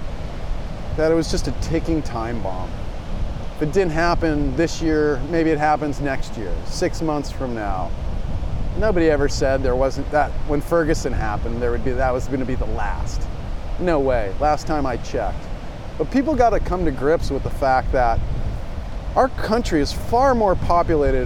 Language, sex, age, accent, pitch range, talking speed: English, male, 40-59, American, 120-175 Hz, 185 wpm